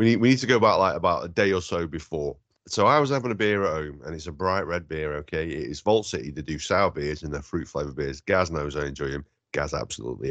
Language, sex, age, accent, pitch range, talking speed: English, male, 30-49, British, 80-110 Hz, 280 wpm